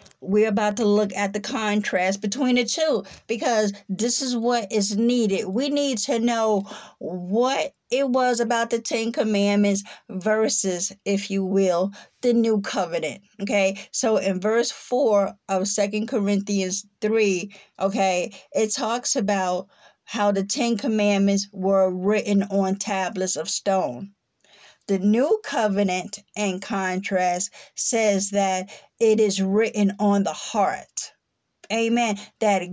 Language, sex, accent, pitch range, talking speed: English, female, American, 195-225 Hz, 130 wpm